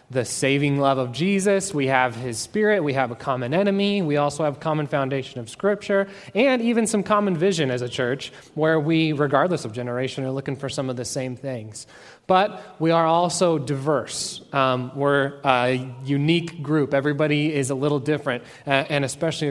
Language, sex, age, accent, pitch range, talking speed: English, male, 20-39, American, 130-170 Hz, 190 wpm